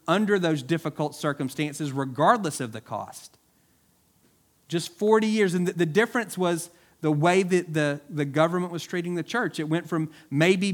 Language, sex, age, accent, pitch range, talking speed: English, male, 40-59, American, 120-160 Hz, 170 wpm